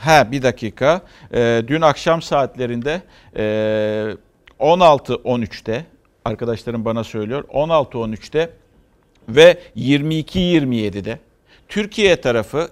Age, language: 50-69, Turkish